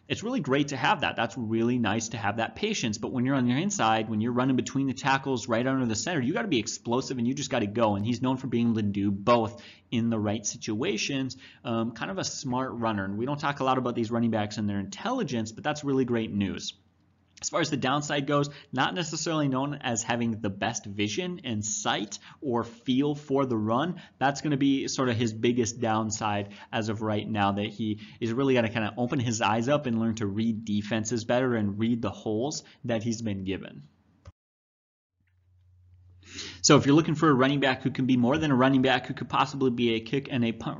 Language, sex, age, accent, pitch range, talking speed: English, male, 30-49, American, 110-130 Hz, 240 wpm